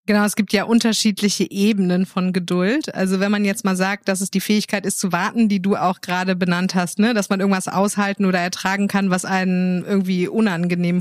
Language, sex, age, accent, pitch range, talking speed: German, female, 30-49, German, 185-215 Hz, 215 wpm